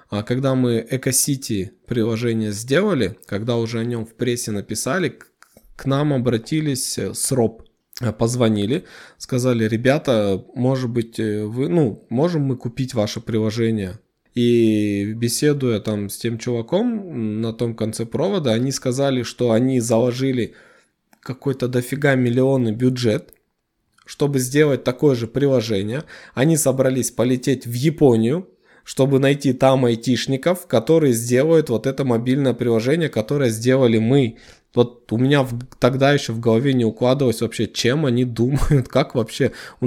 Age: 20-39